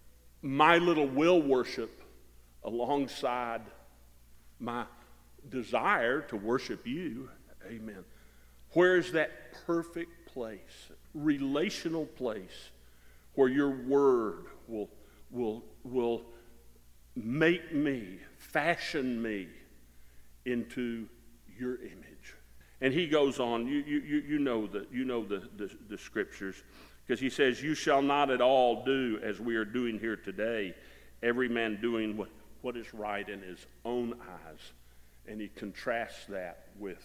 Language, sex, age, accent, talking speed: English, male, 50-69, American, 125 wpm